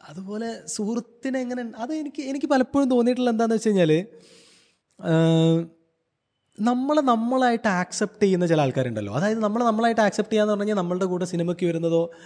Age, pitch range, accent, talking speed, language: 20-39, 135-205 Hz, native, 130 wpm, Malayalam